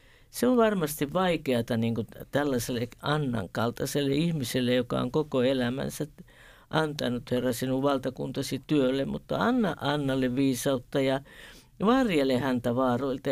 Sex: female